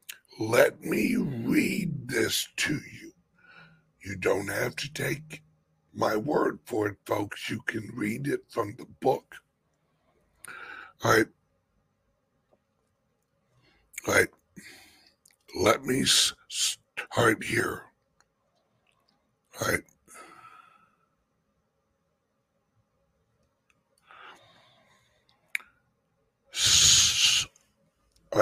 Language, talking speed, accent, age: English, 70 wpm, American, 60-79